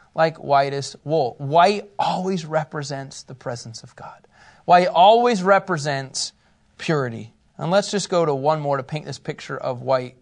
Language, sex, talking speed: English, male, 160 wpm